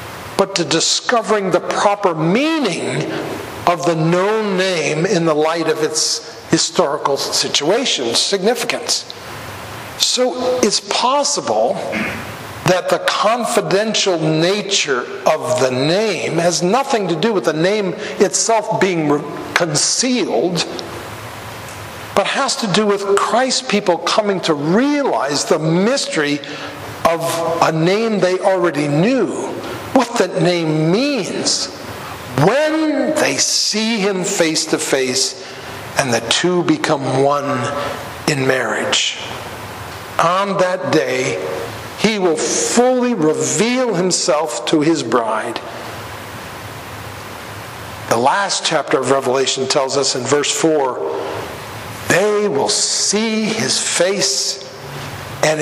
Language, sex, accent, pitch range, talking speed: English, male, American, 145-210 Hz, 110 wpm